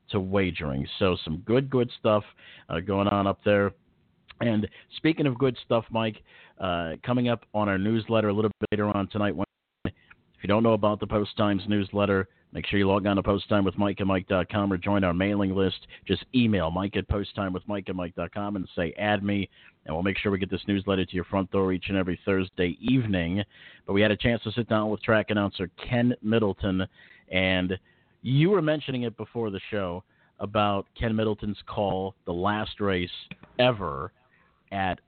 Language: English